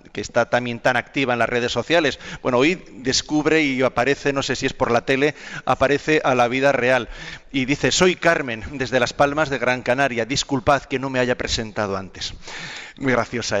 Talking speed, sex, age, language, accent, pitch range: 200 wpm, male, 40-59, Spanish, Spanish, 125-170 Hz